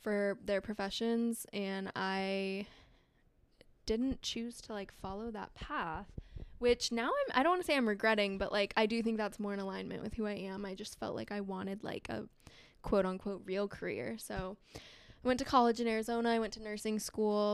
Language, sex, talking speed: English, female, 200 wpm